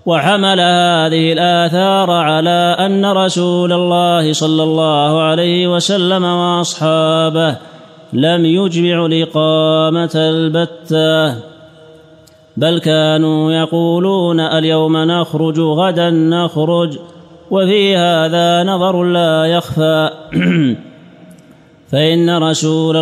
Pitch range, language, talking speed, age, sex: 160-170 Hz, Arabic, 80 wpm, 30-49, male